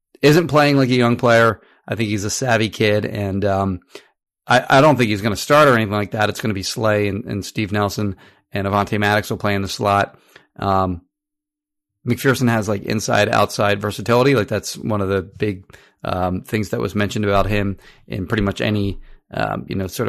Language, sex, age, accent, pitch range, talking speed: English, male, 30-49, American, 100-125 Hz, 210 wpm